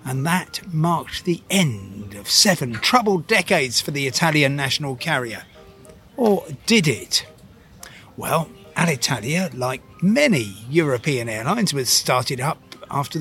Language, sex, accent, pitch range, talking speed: English, male, British, 125-165 Hz, 125 wpm